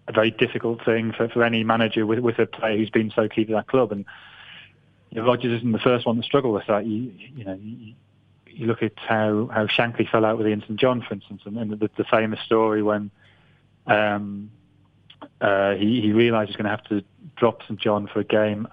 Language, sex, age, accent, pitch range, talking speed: English, male, 30-49, British, 105-125 Hz, 230 wpm